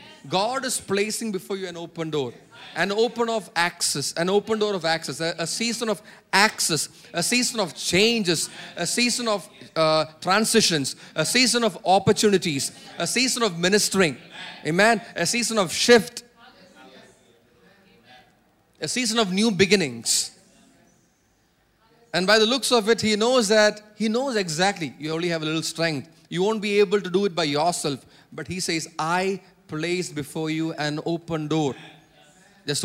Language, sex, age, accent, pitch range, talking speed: English, male, 30-49, Indian, 150-210 Hz, 160 wpm